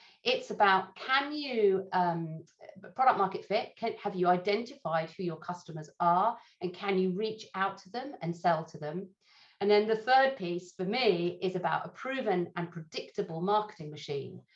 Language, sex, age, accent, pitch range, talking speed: English, female, 50-69, British, 175-220 Hz, 170 wpm